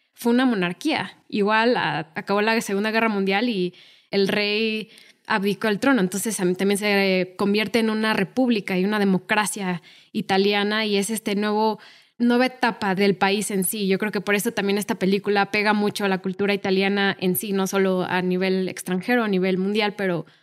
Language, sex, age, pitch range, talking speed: Spanish, female, 20-39, 190-210 Hz, 175 wpm